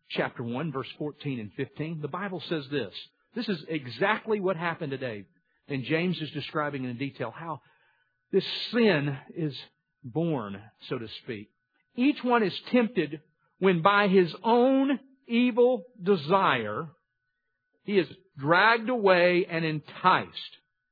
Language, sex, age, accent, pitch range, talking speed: English, male, 50-69, American, 135-195 Hz, 130 wpm